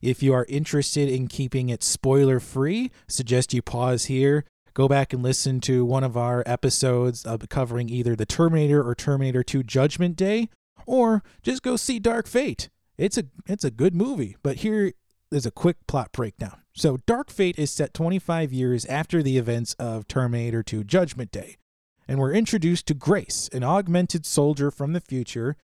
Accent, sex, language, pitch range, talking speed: American, male, English, 120-165 Hz, 175 wpm